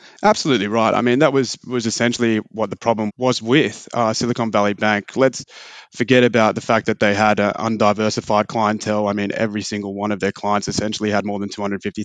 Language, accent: English, Australian